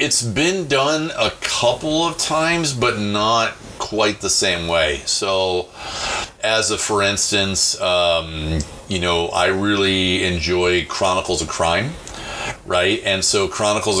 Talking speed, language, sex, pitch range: 135 wpm, English, male, 90-105 Hz